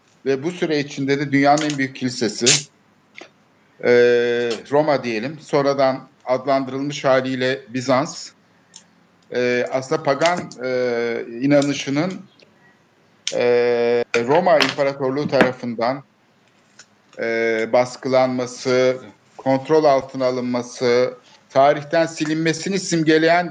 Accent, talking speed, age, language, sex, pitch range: native, 70 wpm, 50-69, Turkish, male, 125-155 Hz